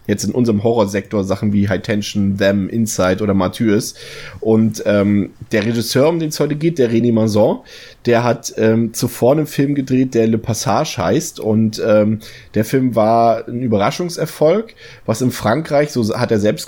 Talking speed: 175 wpm